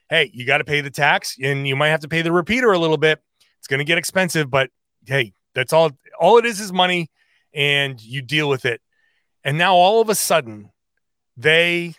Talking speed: 220 wpm